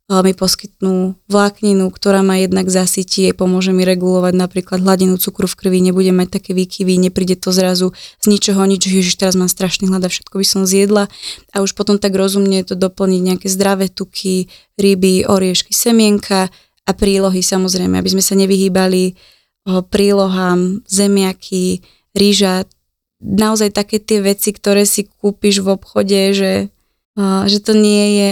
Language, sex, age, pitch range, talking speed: Slovak, female, 20-39, 185-200 Hz, 155 wpm